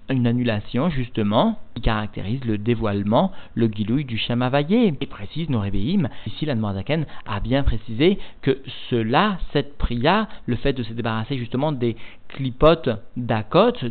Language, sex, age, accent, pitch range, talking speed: French, male, 50-69, French, 115-155 Hz, 140 wpm